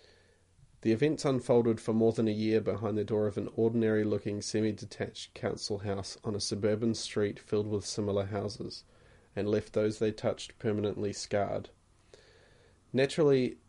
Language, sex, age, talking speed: English, male, 30-49, 150 wpm